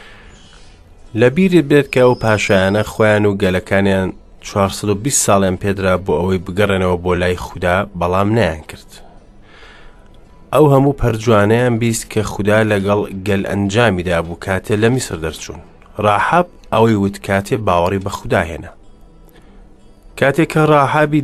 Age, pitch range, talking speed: 30-49, 100-125 Hz, 140 wpm